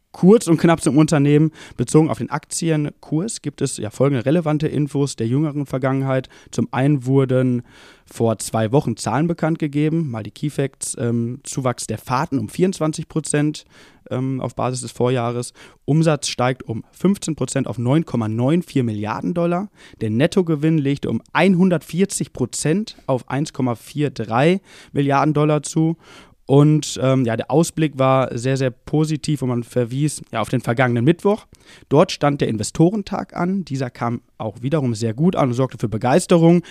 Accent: German